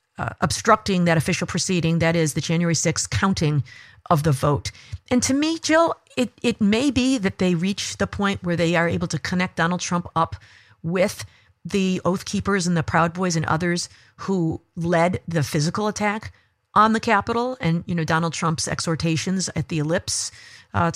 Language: English